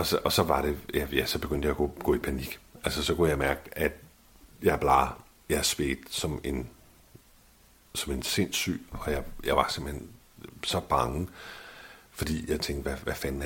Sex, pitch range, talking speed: male, 70-80 Hz, 205 wpm